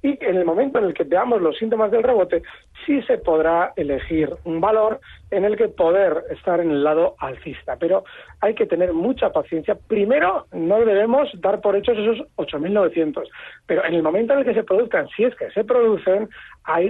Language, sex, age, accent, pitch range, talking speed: Spanish, male, 40-59, Spanish, 170-230 Hz, 200 wpm